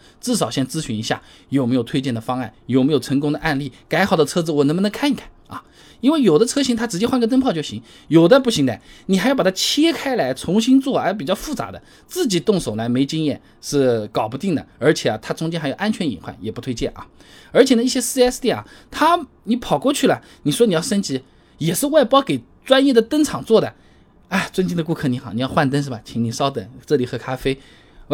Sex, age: male, 20-39